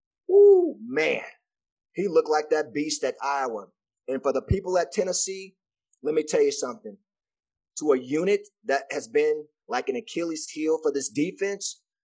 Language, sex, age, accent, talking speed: English, male, 30-49, American, 165 wpm